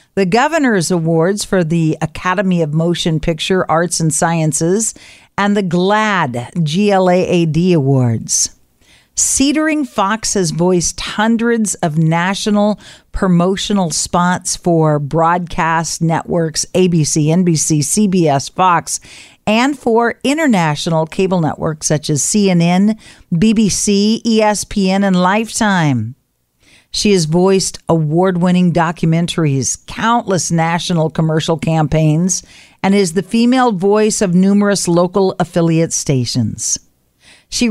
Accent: American